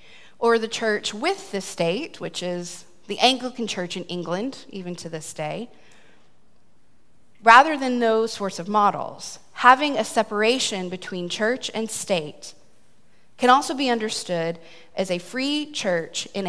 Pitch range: 180-230 Hz